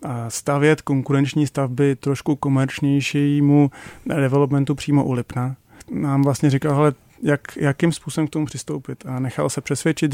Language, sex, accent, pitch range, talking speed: Czech, male, native, 135-145 Hz, 130 wpm